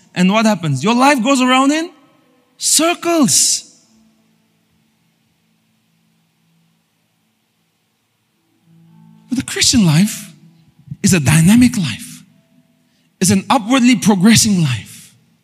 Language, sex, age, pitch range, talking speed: English, male, 40-59, 170-235 Hz, 85 wpm